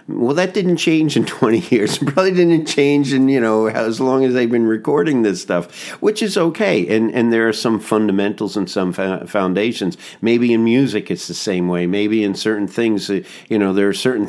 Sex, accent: male, American